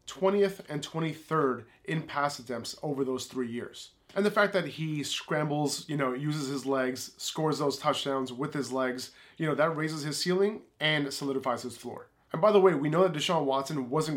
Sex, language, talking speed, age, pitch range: male, English, 200 wpm, 20-39, 135-175 Hz